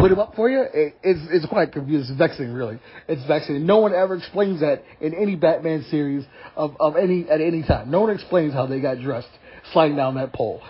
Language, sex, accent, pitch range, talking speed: English, male, American, 150-210 Hz, 230 wpm